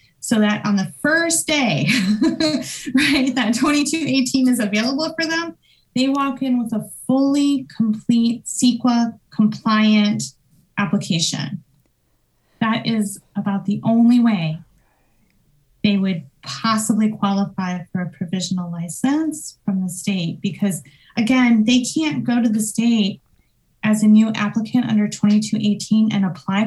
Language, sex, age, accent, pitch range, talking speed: English, female, 20-39, American, 195-245 Hz, 125 wpm